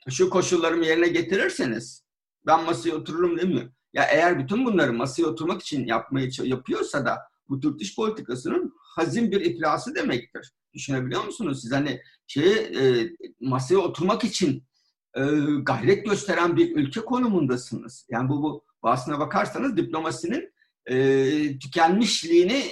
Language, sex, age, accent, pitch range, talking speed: Turkish, male, 50-69, native, 135-220 Hz, 120 wpm